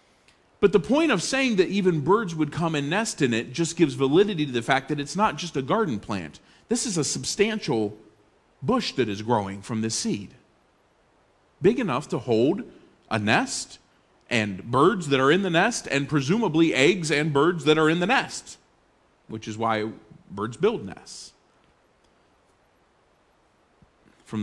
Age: 40-59